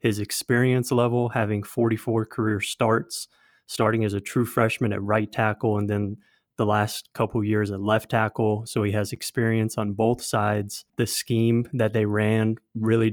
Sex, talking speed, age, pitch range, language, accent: male, 170 wpm, 20-39, 105-115 Hz, English, American